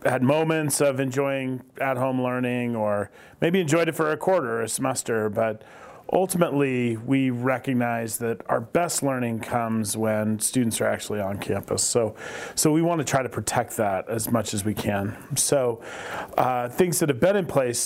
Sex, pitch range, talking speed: male, 110-135 Hz, 180 wpm